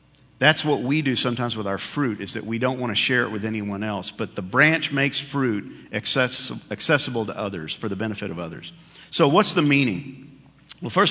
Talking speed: 205 wpm